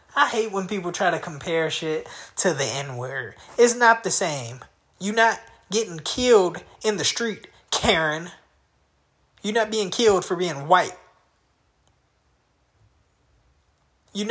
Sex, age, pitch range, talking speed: male, 20-39, 150-215 Hz, 130 wpm